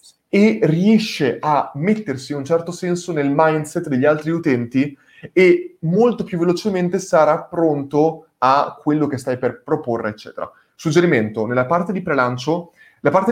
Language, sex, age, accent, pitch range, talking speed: Italian, male, 20-39, native, 145-195 Hz, 150 wpm